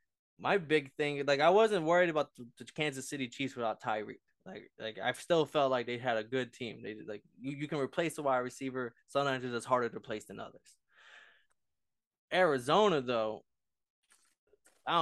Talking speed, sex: 185 wpm, male